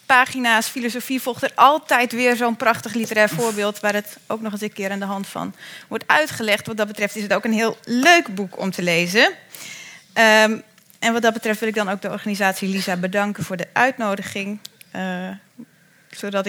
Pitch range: 195-240 Hz